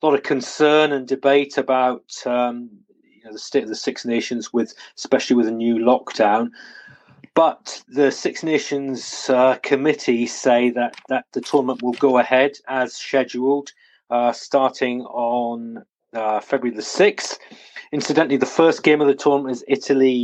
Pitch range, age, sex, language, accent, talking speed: 120-140 Hz, 30-49, male, English, British, 160 wpm